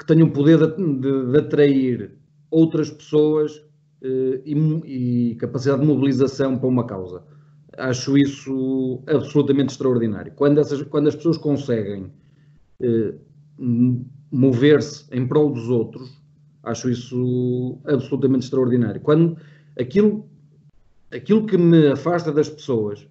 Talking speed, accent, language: 105 wpm, Portuguese, Portuguese